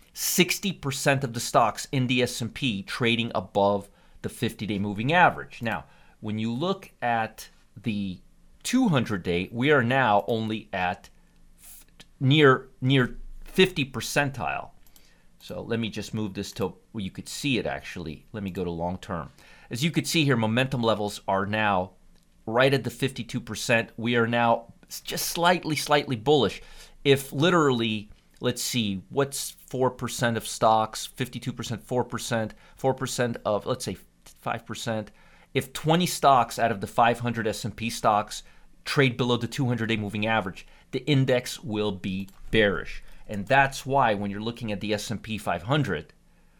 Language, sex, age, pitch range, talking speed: English, male, 30-49, 105-135 Hz, 150 wpm